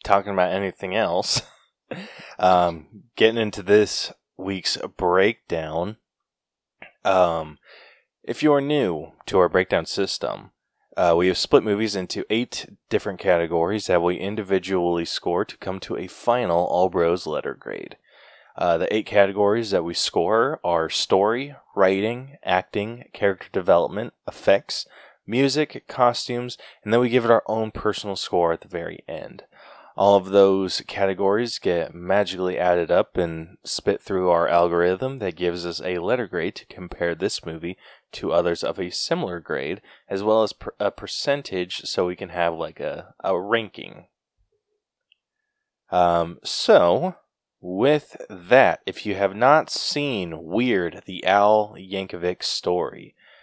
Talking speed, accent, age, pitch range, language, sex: 140 wpm, American, 20-39, 90-110 Hz, English, male